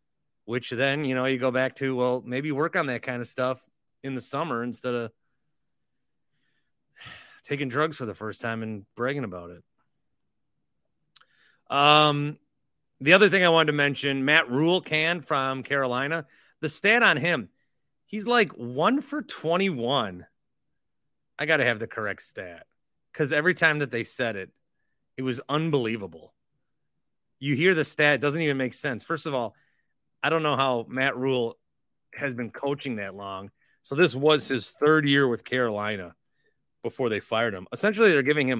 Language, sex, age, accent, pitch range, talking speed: English, male, 30-49, American, 125-175 Hz, 170 wpm